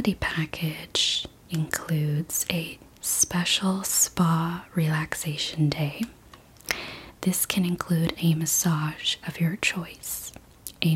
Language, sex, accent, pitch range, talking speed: English, female, American, 155-180 Hz, 90 wpm